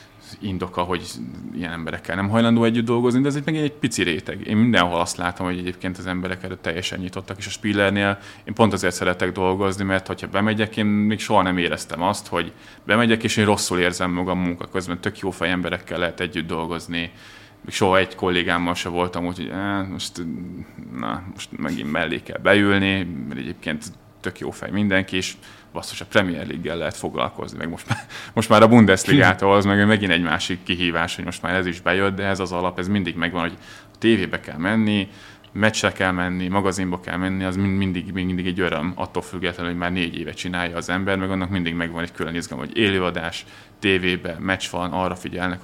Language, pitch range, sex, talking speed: Hungarian, 90-100 Hz, male, 200 wpm